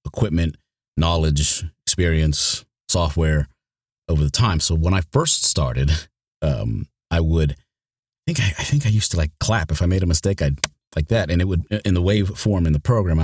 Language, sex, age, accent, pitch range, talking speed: English, male, 30-49, American, 75-95 Hz, 195 wpm